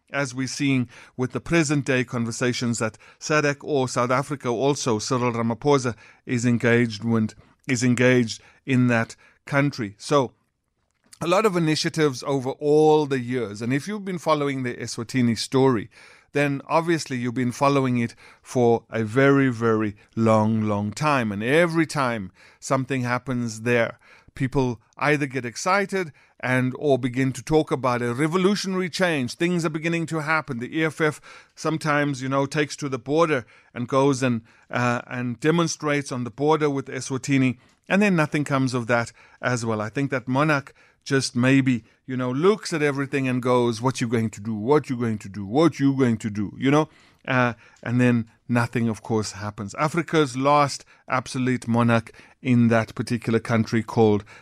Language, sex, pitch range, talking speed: English, male, 120-150 Hz, 170 wpm